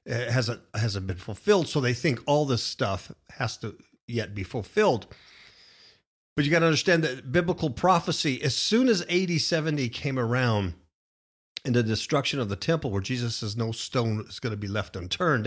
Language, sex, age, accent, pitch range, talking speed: English, male, 50-69, American, 110-155 Hz, 190 wpm